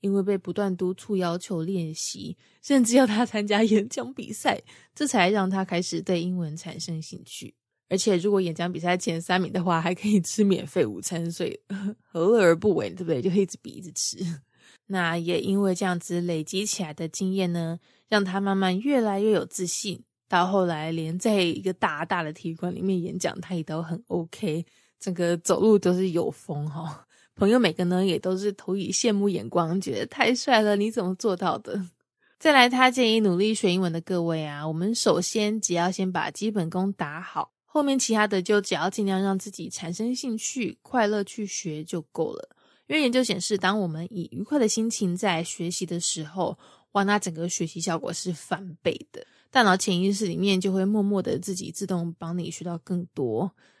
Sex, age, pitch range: female, 20-39, 175-210 Hz